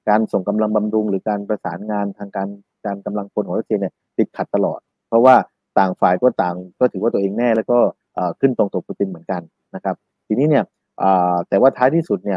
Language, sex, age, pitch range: Thai, male, 30-49, 100-120 Hz